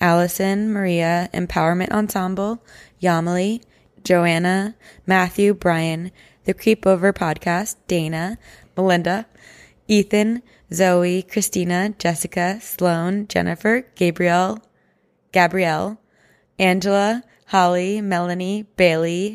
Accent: American